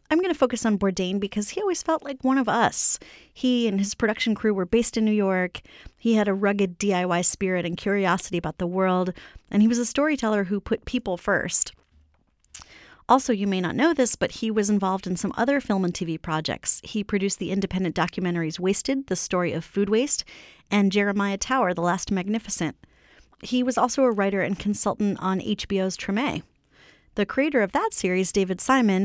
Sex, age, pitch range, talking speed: female, 30-49, 180-225 Hz, 195 wpm